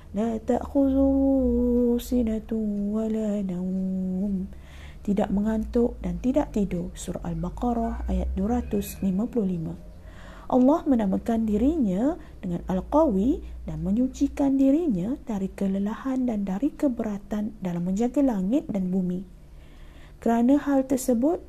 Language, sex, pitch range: Malay, female, 195-250 Hz